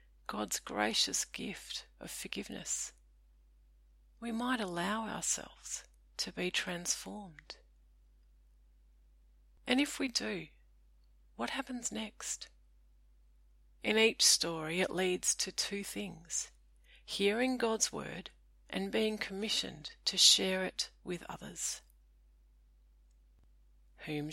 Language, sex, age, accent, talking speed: English, female, 40-59, Australian, 95 wpm